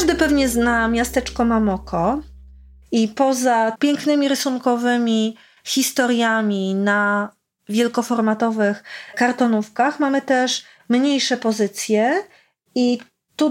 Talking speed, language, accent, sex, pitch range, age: 85 wpm, Polish, native, female, 215-275 Hz, 30-49